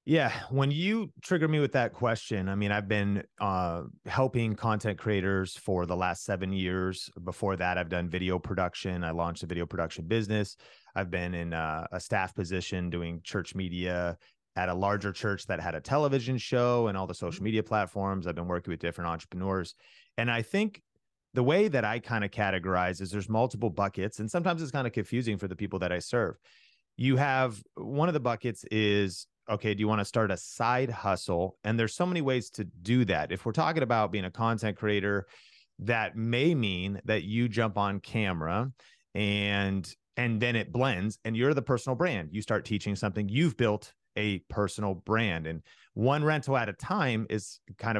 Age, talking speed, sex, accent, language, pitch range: 30-49, 195 wpm, male, American, English, 95-120 Hz